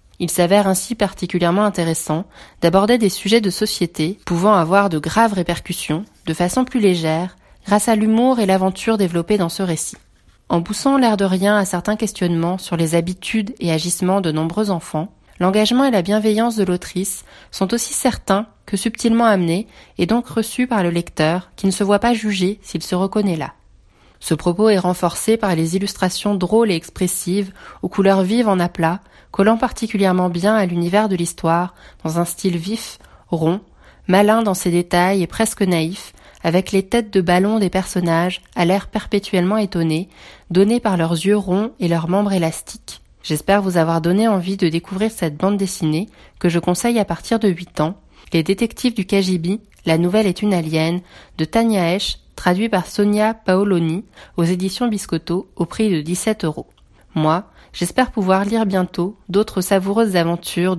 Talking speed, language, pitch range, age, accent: 175 wpm, French, 170-210 Hz, 20-39, French